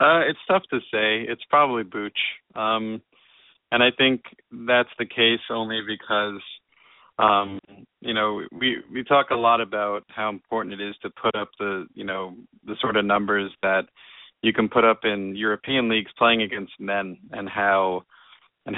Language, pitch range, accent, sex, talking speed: English, 100-115 Hz, American, male, 175 wpm